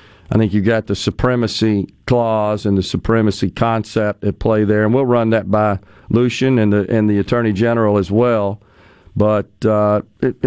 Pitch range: 105-130 Hz